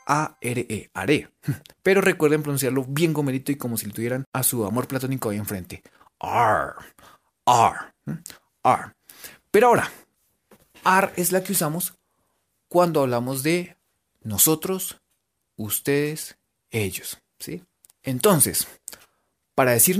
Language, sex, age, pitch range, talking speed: Spanish, male, 30-49, 120-180 Hz, 110 wpm